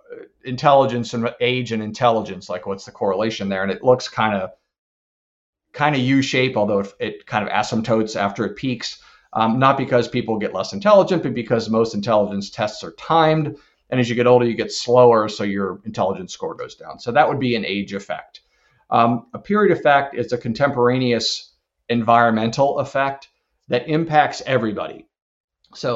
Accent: American